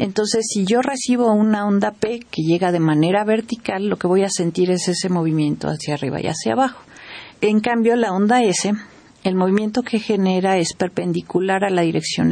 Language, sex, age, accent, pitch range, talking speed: Spanish, female, 40-59, Mexican, 170-205 Hz, 190 wpm